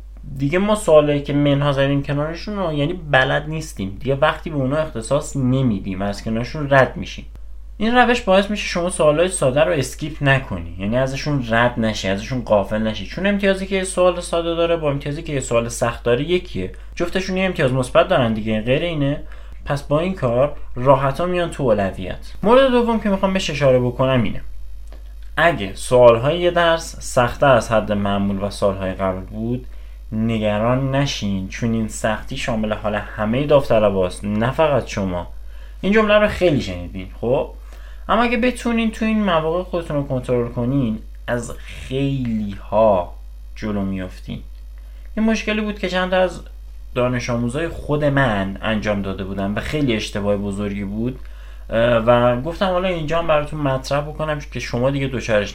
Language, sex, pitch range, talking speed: Persian, male, 105-160 Hz, 165 wpm